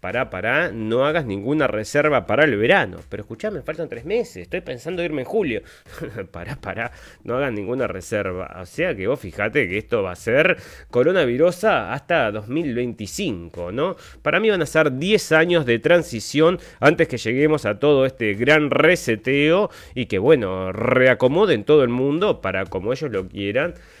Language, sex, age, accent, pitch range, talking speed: Spanish, male, 30-49, Argentinian, 110-175 Hz, 175 wpm